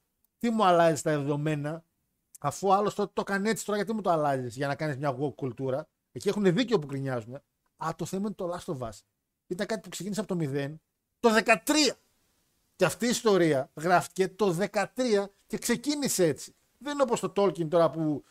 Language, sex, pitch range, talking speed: Greek, male, 145-210 Hz, 195 wpm